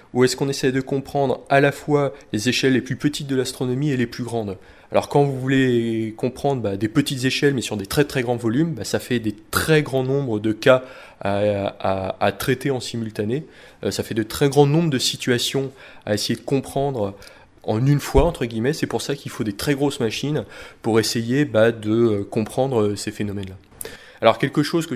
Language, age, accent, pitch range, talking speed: French, 30-49, French, 105-135 Hz, 210 wpm